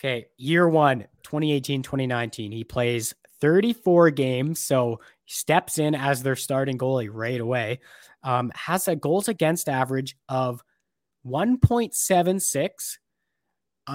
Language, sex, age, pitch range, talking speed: English, male, 20-39, 125-160 Hz, 110 wpm